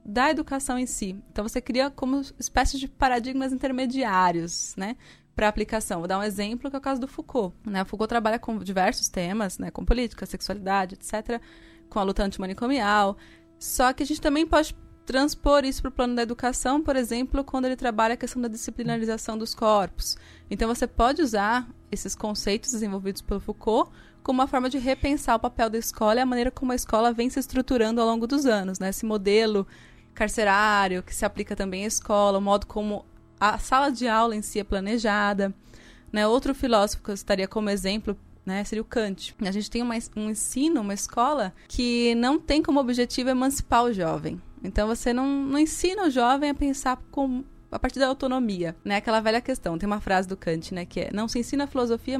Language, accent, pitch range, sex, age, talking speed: Portuguese, Brazilian, 205-260 Hz, female, 20-39, 200 wpm